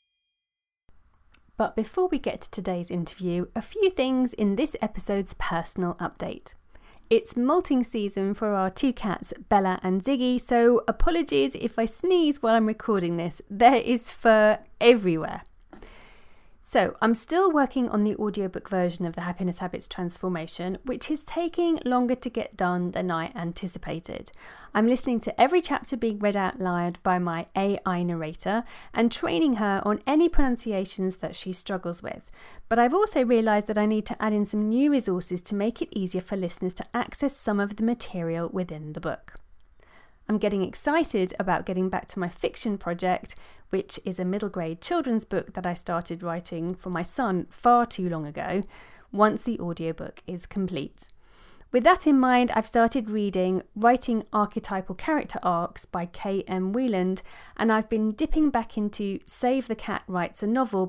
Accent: British